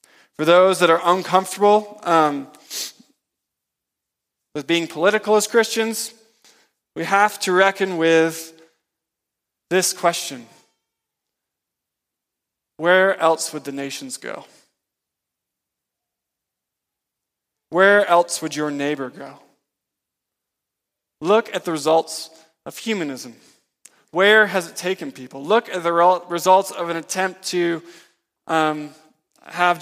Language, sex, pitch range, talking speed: English, male, 155-190 Hz, 105 wpm